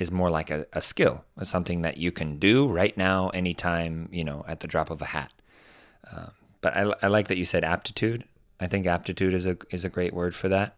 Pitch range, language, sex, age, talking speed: 80-95 Hz, English, male, 30-49, 240 wpm